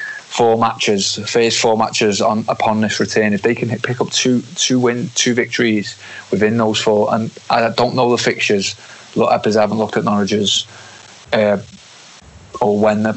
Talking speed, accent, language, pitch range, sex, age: 180 wpm, British, English, 105-110 Hz, male, 20-39